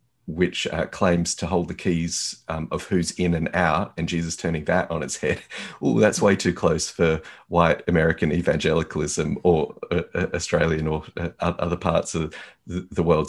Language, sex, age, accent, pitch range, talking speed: English, male, 30-49, Australian, 85-95 Hz, 185 wpm